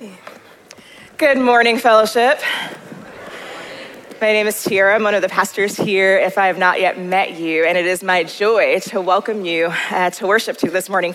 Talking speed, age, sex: 185 wpm, 20-39, female